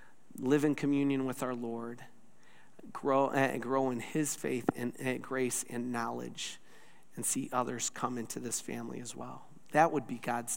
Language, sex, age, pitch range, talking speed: English, male, 40-59, 115-130 Hz, 165 wpm